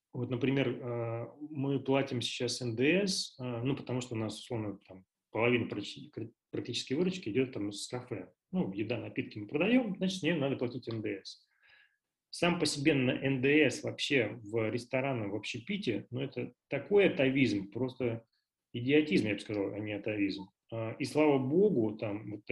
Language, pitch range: Russian, 115-150 Hz